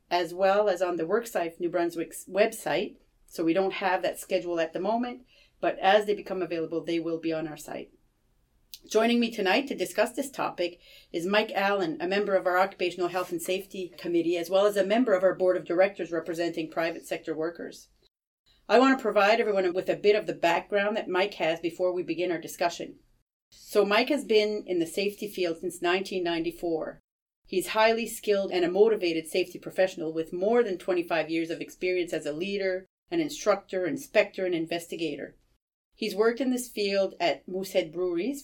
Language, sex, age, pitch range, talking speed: English, female, 40-59, 170-210 Hz, 190 wpm